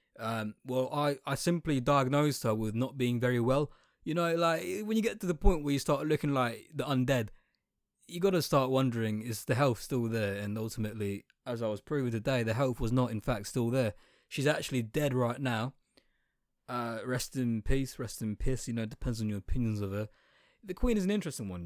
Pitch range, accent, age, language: 105-140 Hz, British, 20-39, English